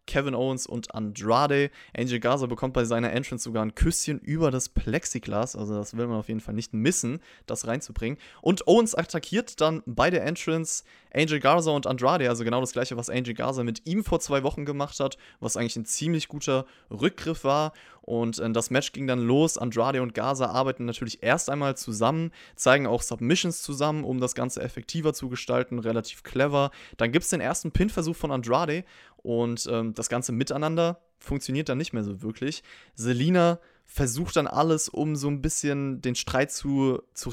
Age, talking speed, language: 20-39, 190 wpm, German